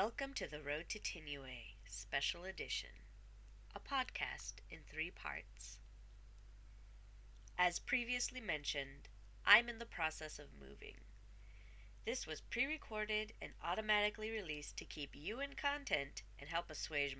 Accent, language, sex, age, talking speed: American, English, female, 30-49, 125 wpm